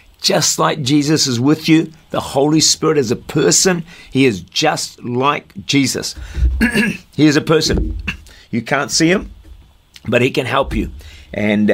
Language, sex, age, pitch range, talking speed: English, male, 50-69, 95-140 Hz, 160 wpm